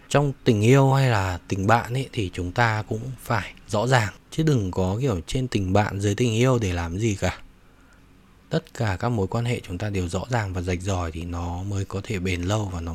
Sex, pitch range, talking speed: male, 95-130 Hz, 240 wpm